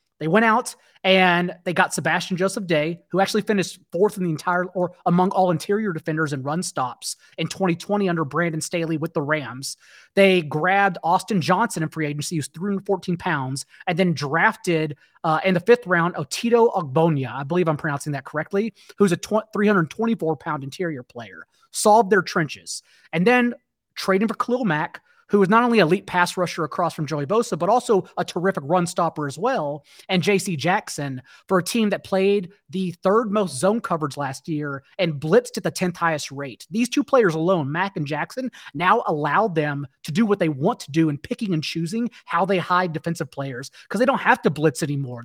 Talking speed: 200 wpm